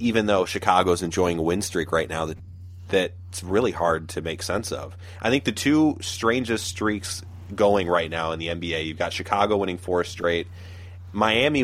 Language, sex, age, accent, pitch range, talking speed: English, male, 30-49, American, 90-100 Hz, 185 wpm